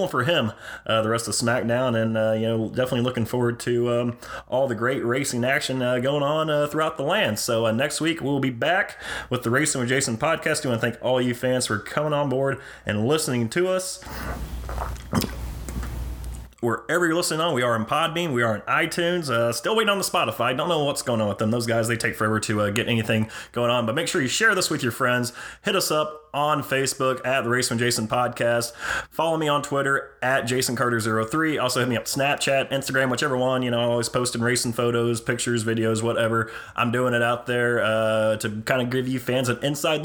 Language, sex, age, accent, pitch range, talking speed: English, male, 30-49, American, 115-140 Hz, 225 wpm